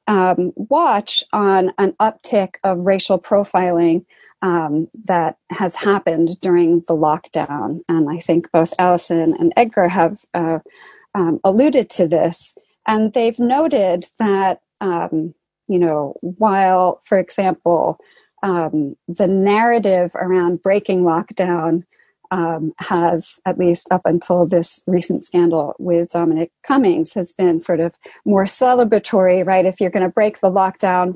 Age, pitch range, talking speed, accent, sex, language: 40-59, 170-195 Hz, 135 wpm, American, female, English